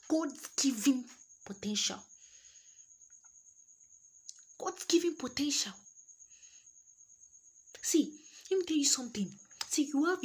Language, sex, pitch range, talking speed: English, female, 195-285 Hz, 90 wpm